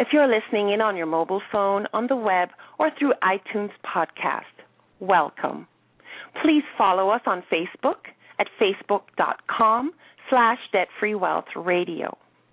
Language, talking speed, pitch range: English, 120 wpm, 195-250 Hz